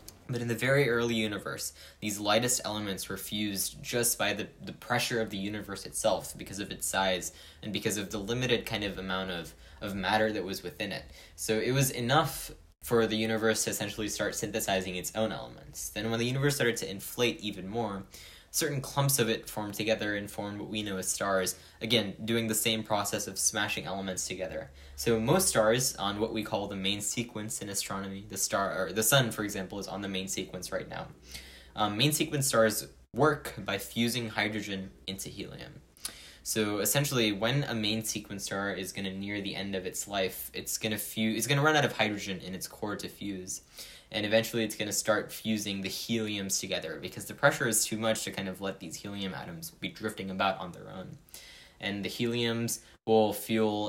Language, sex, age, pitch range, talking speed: English, male, 10-29, 95-115 Hz, 205 wpm